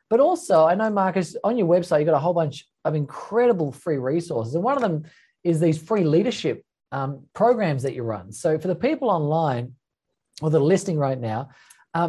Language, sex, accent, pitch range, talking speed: English, male, Australian, 130-175 Hz, 205 wpm